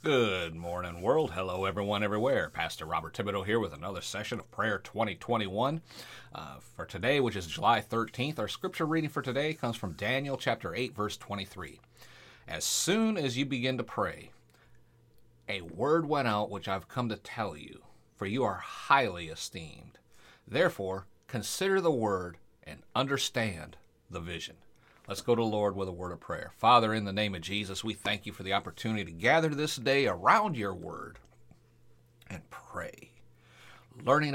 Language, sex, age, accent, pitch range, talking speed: English, male, 40-59, American, 105-135 Hz, 170 wpm